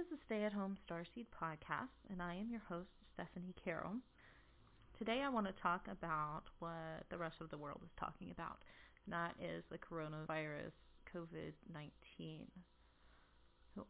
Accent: American